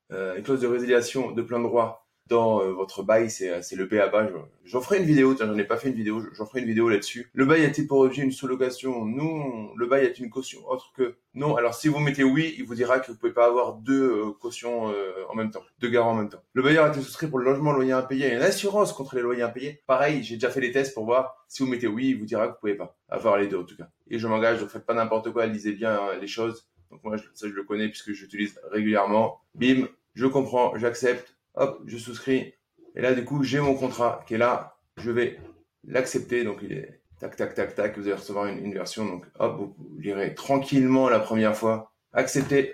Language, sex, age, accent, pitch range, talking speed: French, male, 20-39, French, 110-135 Hz, 265 wpm